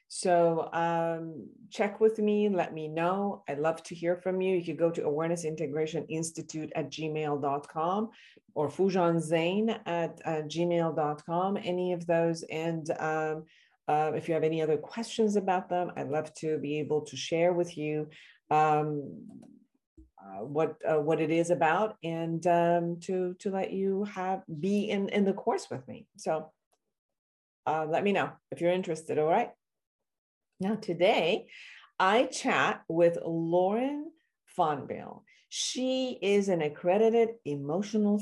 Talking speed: 150 wpm